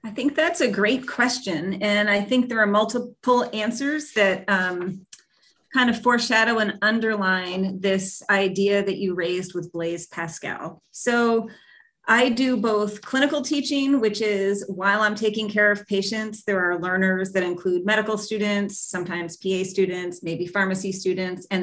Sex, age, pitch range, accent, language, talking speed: female, 30-49, 180-220 Hz, American, English, 155 wpm